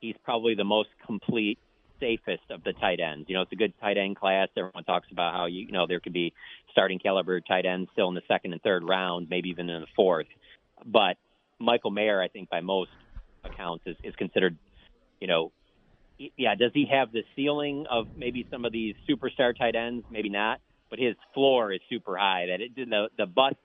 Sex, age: male, 40-59